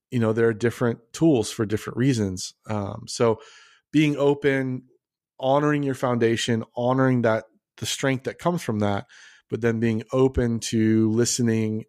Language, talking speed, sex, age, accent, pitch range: English, 150 wpm, male, 30-49, American, 105-125 Hz